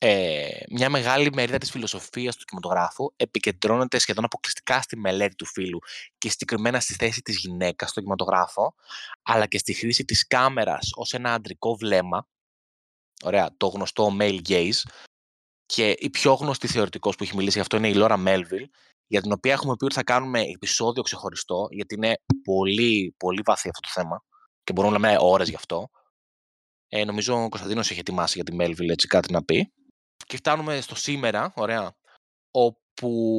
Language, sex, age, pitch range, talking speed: Greek, male, 20-39, 95-125 Hz, 170 wpm